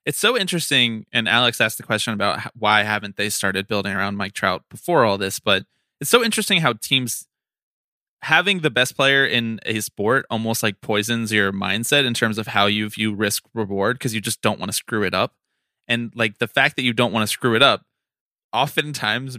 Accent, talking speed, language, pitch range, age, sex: American, 210 wpm, English, 100-115 Hz, 20-39, male